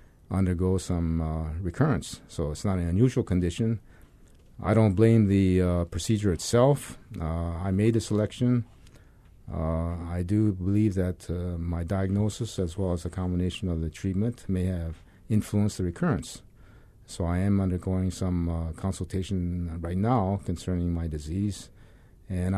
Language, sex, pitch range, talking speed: English, male, 90-105 Hz, 150 wpm